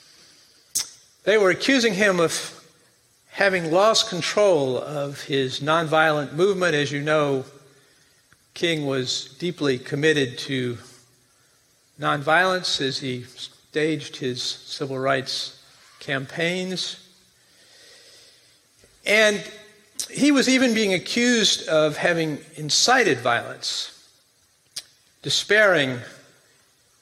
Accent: American